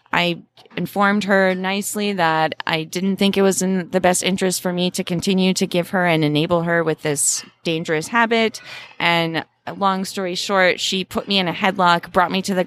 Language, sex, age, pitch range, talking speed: English, female, 20-39, 160-195 Hz, 200 wpm